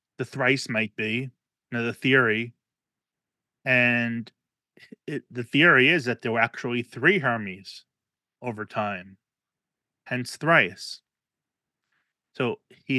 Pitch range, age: 120-130 Hz, 30-49